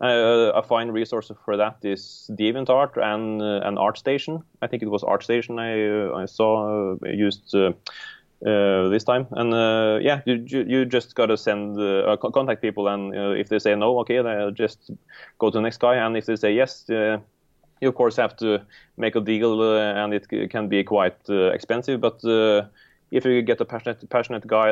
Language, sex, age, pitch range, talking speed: English, male, 30-49, 100-115 Hz, 205 wpm